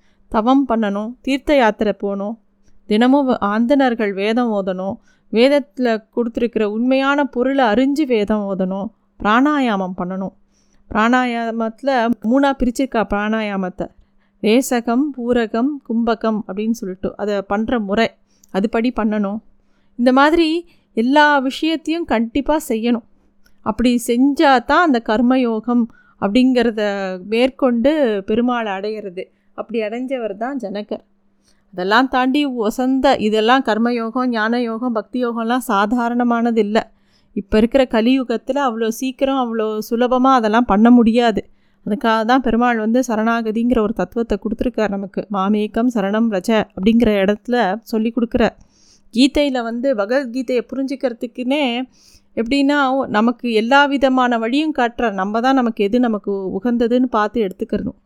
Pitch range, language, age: 215-255 Hz, Tamil, 30-49